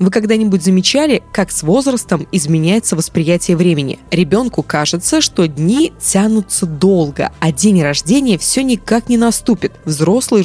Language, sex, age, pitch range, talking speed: Russian, female, 20-39, 165-215 Hz, 130 wpm